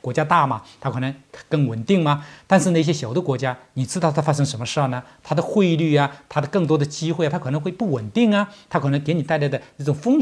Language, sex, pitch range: Chinese, male, 125-190 Hz